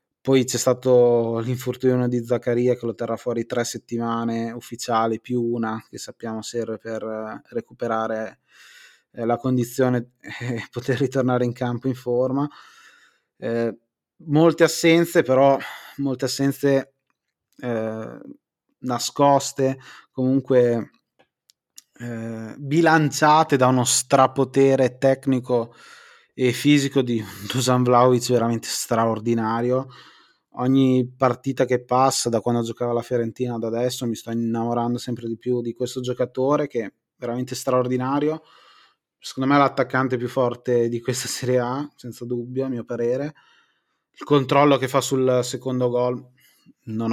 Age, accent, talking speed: 20-39, native, 125 wpm